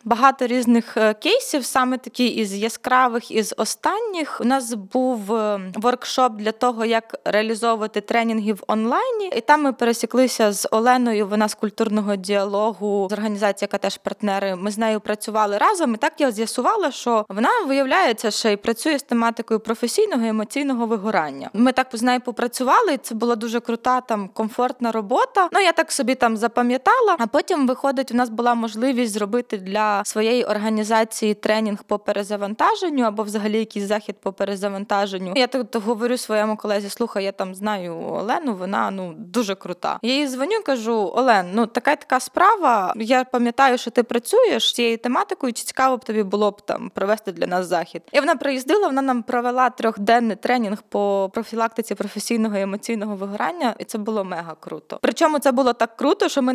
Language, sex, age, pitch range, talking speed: Ukrainian, female, 20-39, 215-255 Hz, 175 wpm